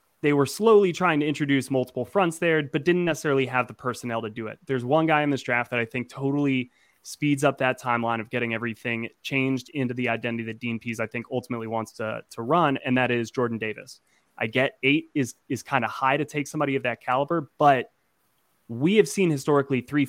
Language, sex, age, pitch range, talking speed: English, male, 20-39, 120-140 Hz, 220 wpm